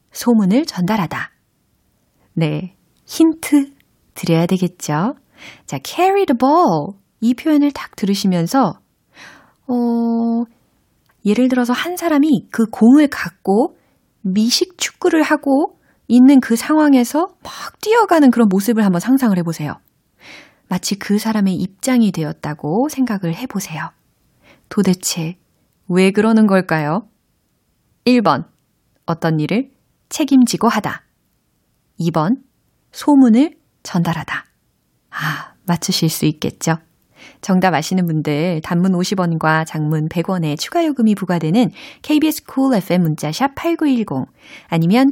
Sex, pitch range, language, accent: female, 170-265 Hz, Korean, native